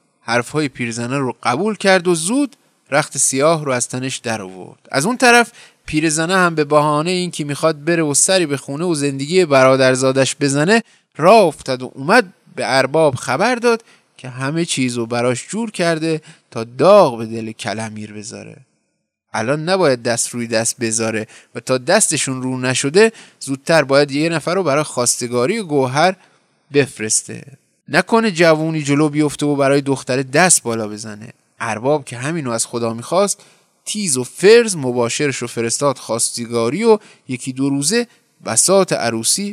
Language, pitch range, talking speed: Persian, 125-185 Hz, 155 wpm